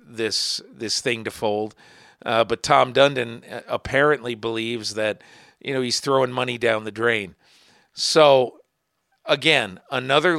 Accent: American